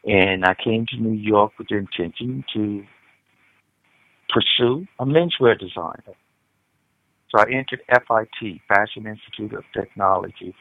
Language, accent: English, American